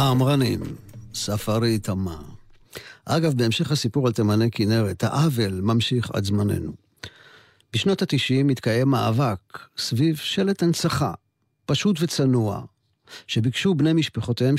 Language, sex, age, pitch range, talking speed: Hebrew, male, 50-69, 110-140 Hz, 105 wpm